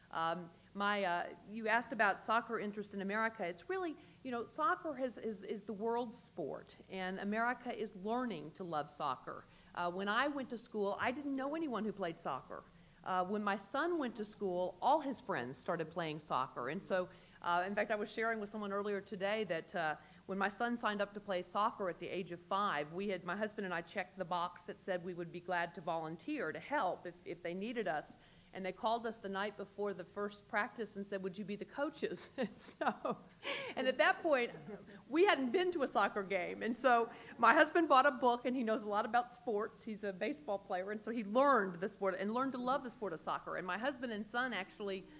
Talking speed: 230 wpm